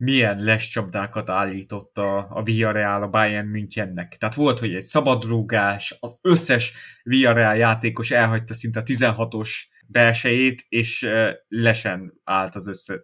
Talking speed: 145 wpm